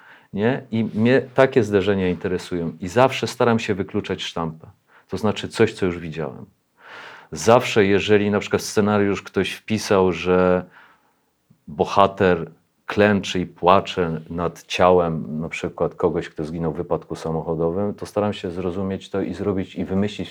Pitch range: 90-105 Hz